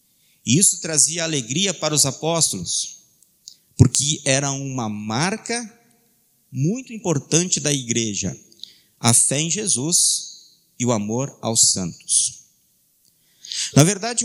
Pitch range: 130-195 Hz